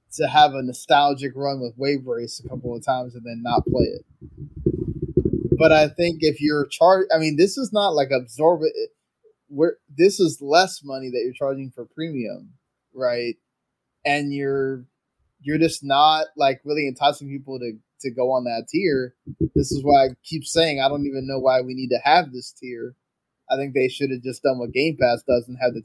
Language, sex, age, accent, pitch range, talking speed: English, male, 20-39, American, 125-155 Hz, 205 wpm